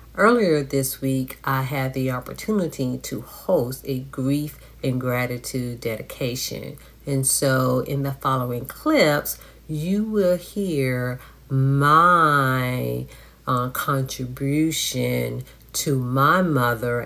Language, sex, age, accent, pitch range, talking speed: English, female, 50-69, American, 125-140 Hz, 100 wpm